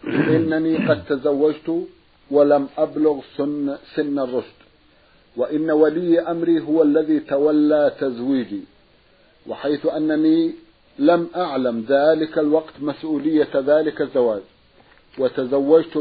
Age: 50-69